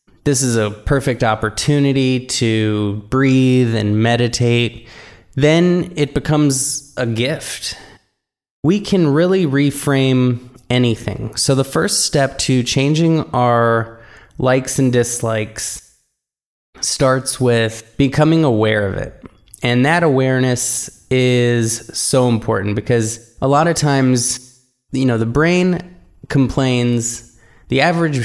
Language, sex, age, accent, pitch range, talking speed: English, male, 20-39, American, 110-135 Hz, 115 wpm